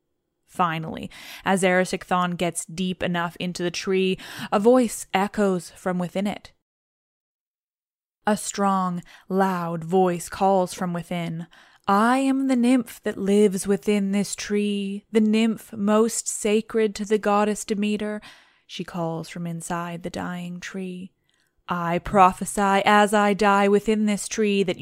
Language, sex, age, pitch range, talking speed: English, female, 10-29, 175-205 Hz, 135 wpm